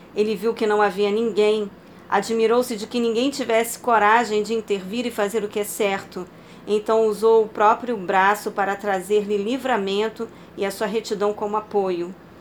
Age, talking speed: 40-59, 165 wpm